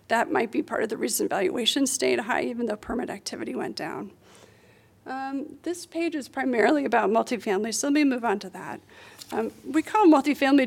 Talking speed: 190 wpm